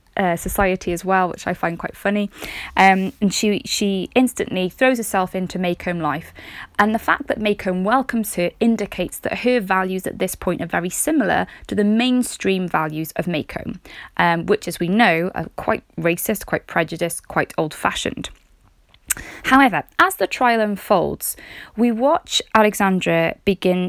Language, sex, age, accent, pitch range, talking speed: English, female, 20-39, British, 175-235 Hz, 160 wpm